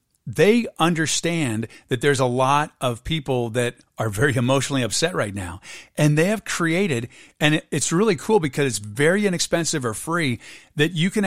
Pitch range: 130-165 Hz